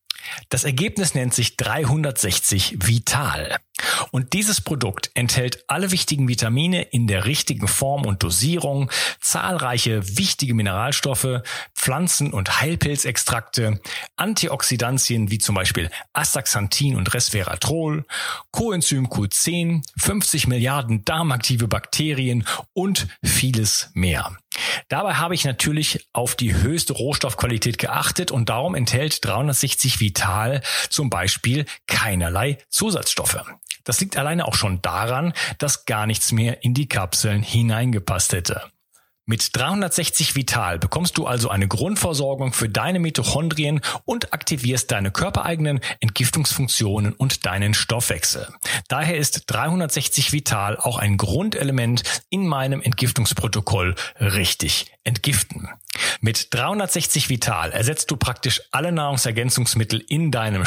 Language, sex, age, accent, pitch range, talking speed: German, male, 40-59, German, 110-150 Hz, 115 wpm